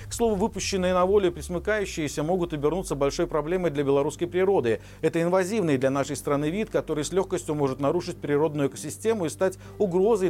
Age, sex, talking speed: 50-69, male, 170 wpm